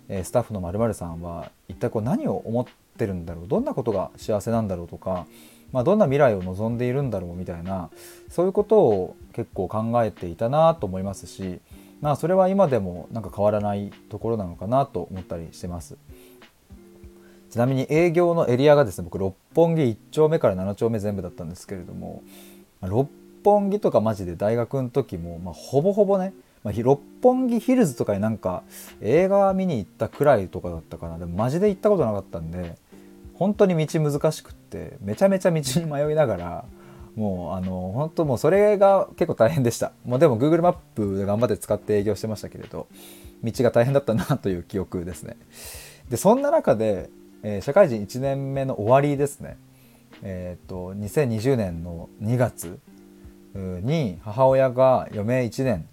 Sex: male